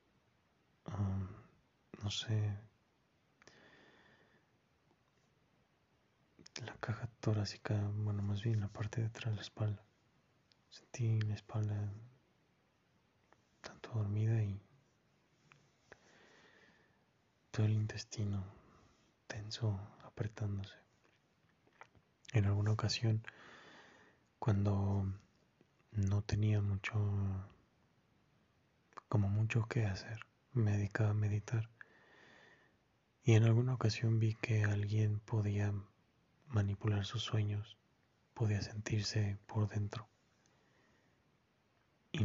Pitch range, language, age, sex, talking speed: 105-110 Hz, Spanish, 20-39, male, 80 wpm